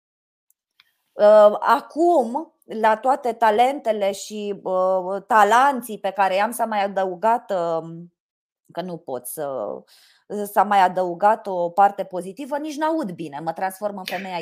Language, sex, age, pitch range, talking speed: Romanian, female, 20-39, 190-260 Hz, 130 wpm